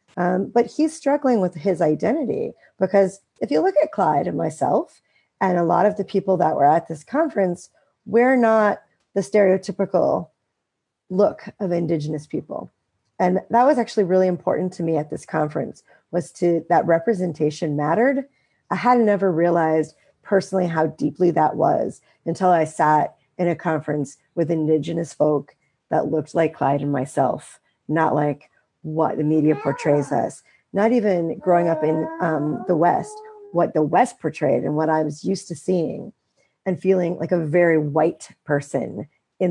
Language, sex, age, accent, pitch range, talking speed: English, female, 40-59, American, 155-195 Hz, 165 wpm